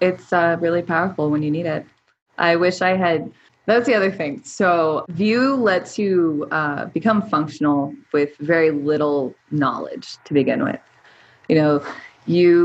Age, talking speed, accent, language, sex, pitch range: 20-39, 155 wpm, American, English, female, 150-200 Hz